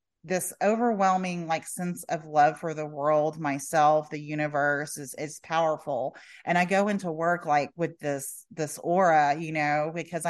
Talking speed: 165 wpm